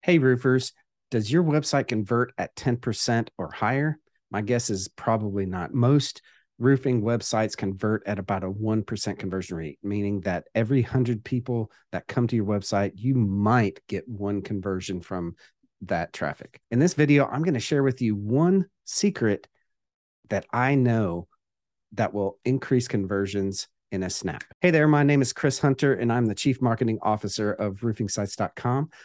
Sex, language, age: male, English, 40-59